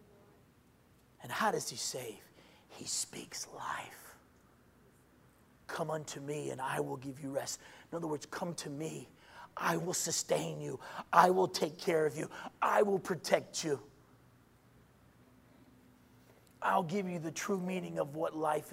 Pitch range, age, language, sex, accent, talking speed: 145-180 Hz, 40-59, English, male, American, 145 wpm